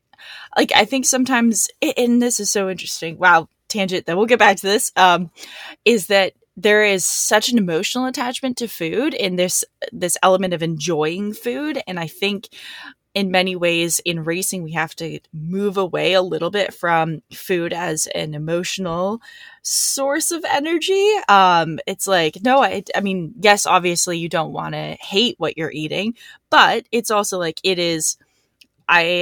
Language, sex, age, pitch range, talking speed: English, female, 20-39, 160-210 Hz, 170 wpm